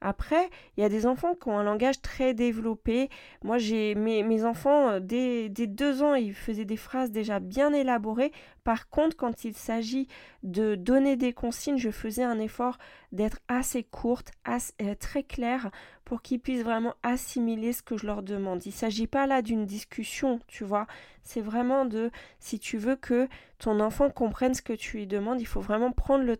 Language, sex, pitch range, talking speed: French, female, 220-265 Hz, 195 wpm